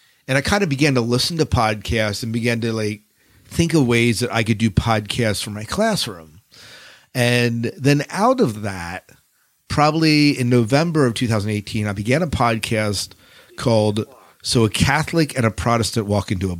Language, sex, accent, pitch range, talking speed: English, male, American, 105-130 Hz, 175 wpm